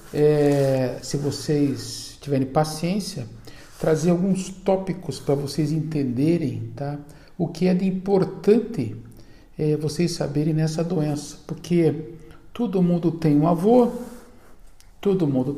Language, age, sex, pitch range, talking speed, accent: Portuguese, 50-69, male, 135-180 Hz, 115 wpm, Brazilian